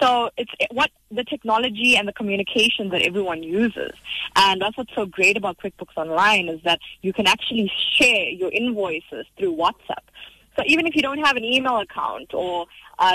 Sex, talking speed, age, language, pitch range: female, 185 wpm, 20-39, English, 175-235 Hz